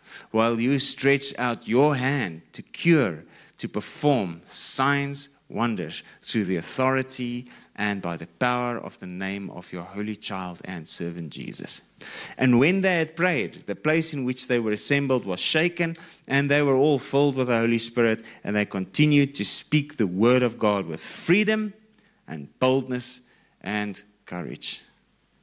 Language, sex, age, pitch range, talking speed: English, male, 30-49, 100-130 Hz, 160 wpm